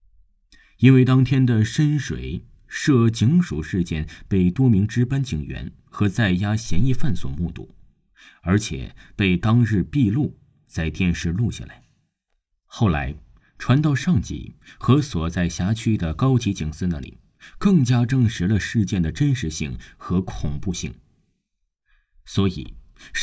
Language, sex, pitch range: Chinese, male, 85-125 Hz